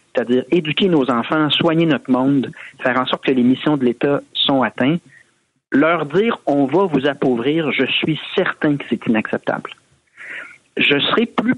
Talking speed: 175 wpm